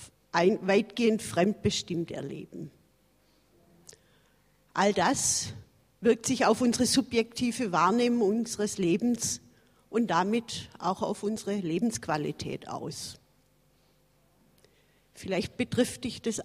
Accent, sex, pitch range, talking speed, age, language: German, female, 180-230 Hz, 90 wpm, 50-69, German